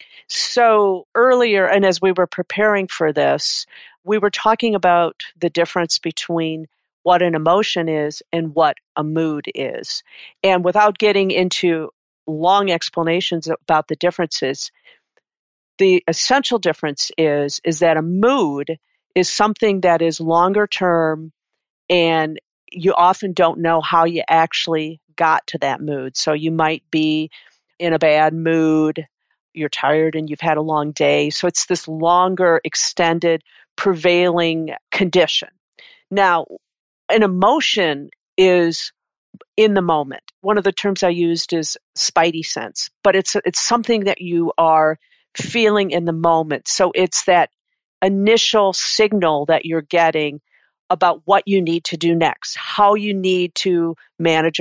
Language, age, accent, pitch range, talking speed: English, 50-69, American, 160-195 Hz, 145 wpm